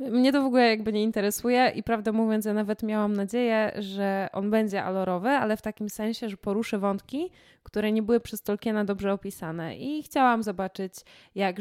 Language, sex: Polish, female